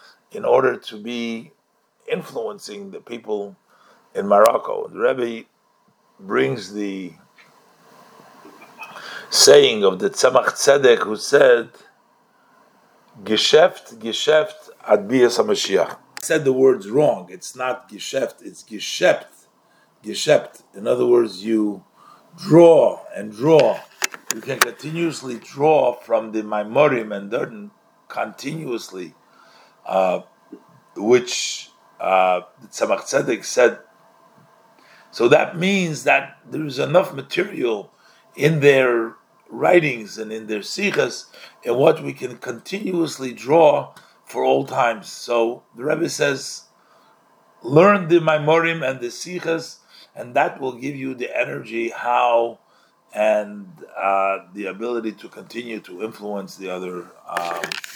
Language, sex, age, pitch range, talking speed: English, male, 50-69, 110-165 Hz, 115 wpm